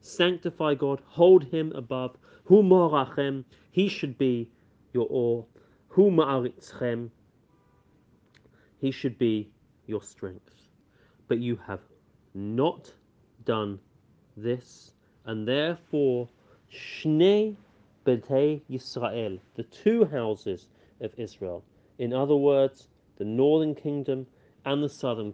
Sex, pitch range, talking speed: male, 115-155 Hz, 90 wpm